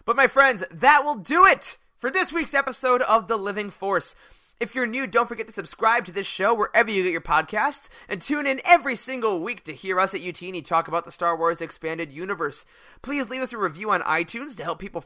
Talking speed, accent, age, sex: 230 wpm, American, 30-49, male